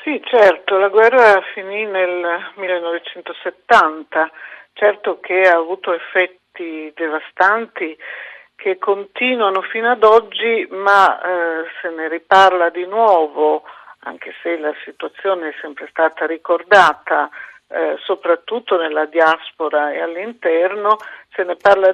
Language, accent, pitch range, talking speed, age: Italian, native, 165-220 Hz, 115 wpm, 50-69